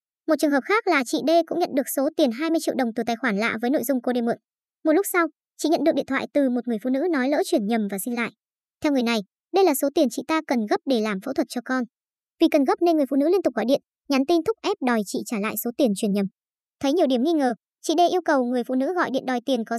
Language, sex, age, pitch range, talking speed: Vietnamese, male, 20-39, 240-320 Hz, 310 wpm